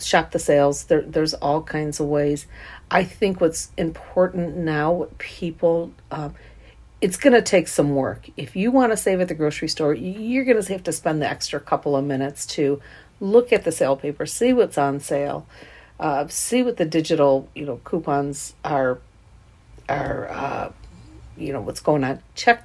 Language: English